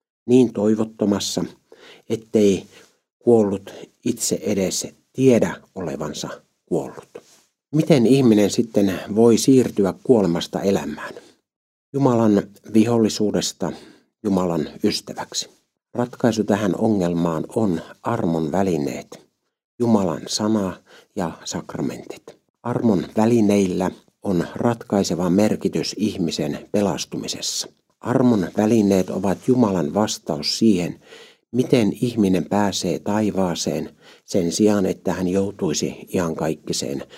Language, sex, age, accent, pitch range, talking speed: Finnish, male, 60-79, native, 95-115 Hz, 85 wpm